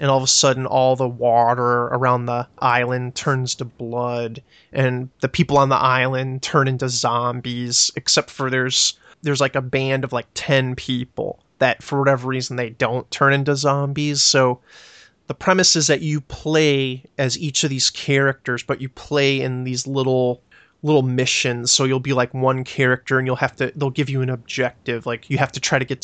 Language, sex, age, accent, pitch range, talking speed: English, male, 30-49, American, 125-140 Hz, 195 wpm